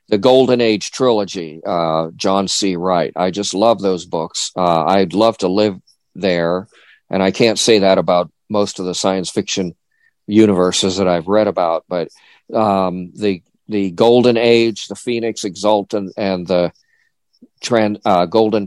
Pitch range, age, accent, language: 90-115 Hz, 50-69, American, English